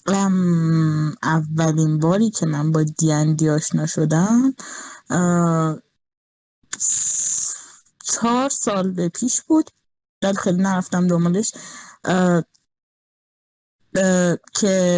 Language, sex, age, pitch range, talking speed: Persian, female, 20-39, 165-230 Hz, 70 wpm